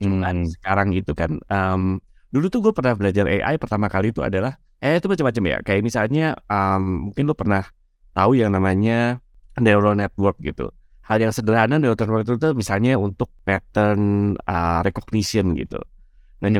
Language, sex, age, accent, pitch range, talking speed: Indonesian, male, 20-39, native, 90-115 Hz, 165 wpm